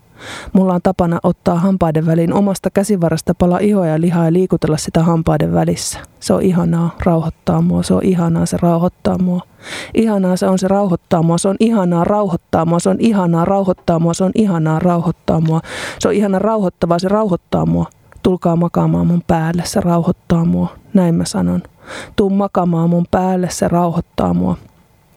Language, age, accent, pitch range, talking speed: Finnish, 20-39, native, 170-195 Hz, 175 wpm